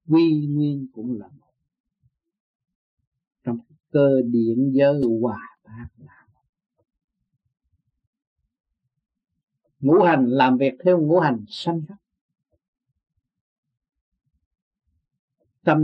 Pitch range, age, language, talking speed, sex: 120-155 Hz, 60-79, Vietnamese, 85 wpm, male